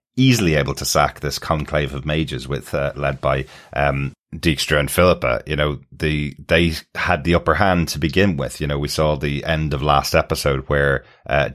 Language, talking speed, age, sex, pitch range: English, 195 wpm, 30-49, male, 70-80 Hz